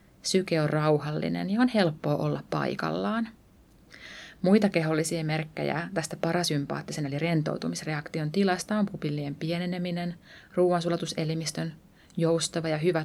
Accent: native